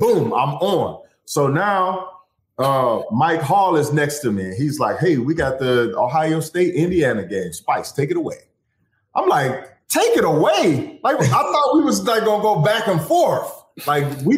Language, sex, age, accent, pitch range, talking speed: English, male, 30-49, American, 160-250 Hz, 185 wpm